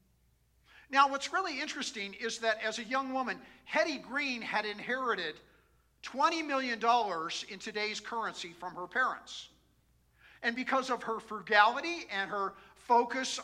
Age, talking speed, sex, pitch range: 50-69, 135 wpm, male, 200-260 Hz